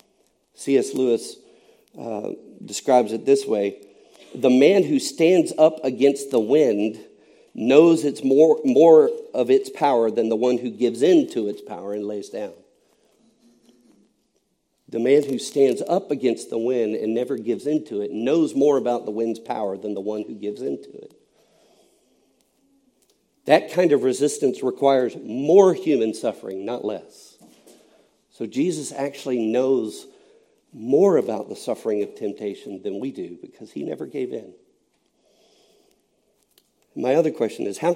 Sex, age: male, 50-69